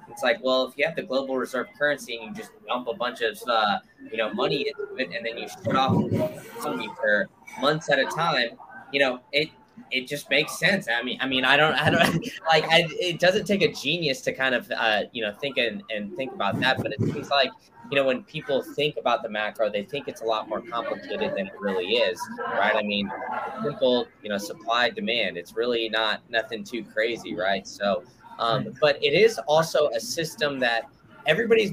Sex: male